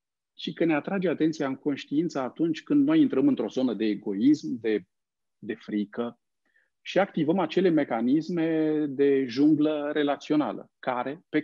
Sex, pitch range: male, 140-220 Hz